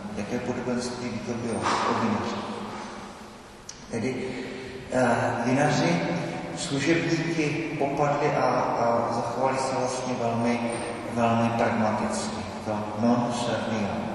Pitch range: 105-120 Hz